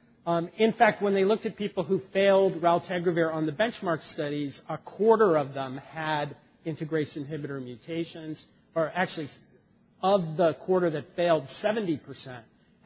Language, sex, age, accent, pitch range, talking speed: English, male, 40-59, American, 140-180 Hz, 145 wpm